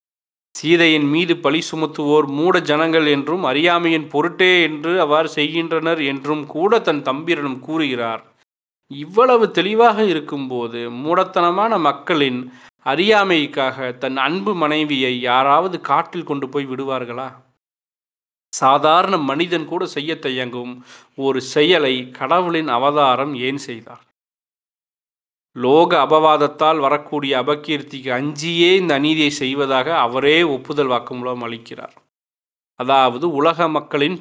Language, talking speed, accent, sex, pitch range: Tamil, 105 wpm, native, male, 130-165 Hz